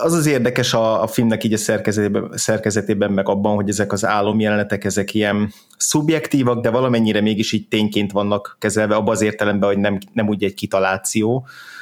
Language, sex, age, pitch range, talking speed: Hungarian, male, 20-39, 105-115 Hz, 180 wpm